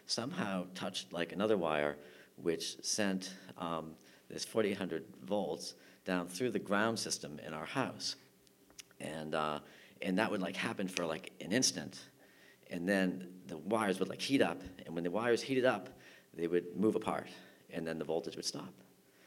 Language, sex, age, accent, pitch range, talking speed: English, male, 50-69, American, 85-95 Hz, 170 wpm